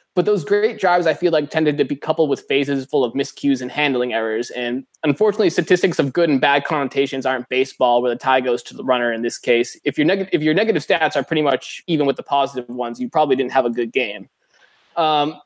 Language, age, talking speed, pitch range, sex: English, 20-39, 235 wpm, 130-165 Hz, male